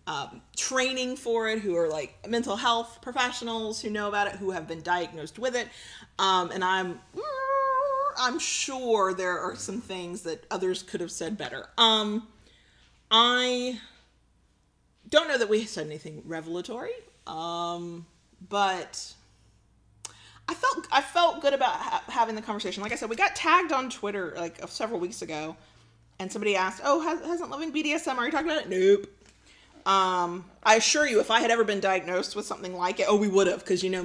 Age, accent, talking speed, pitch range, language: 30-49, American, 180 wpm, 180-255 Hz, English